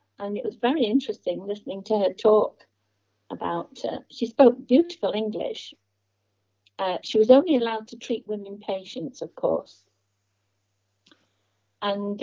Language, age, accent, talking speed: English, 60-79, British, 130 wpm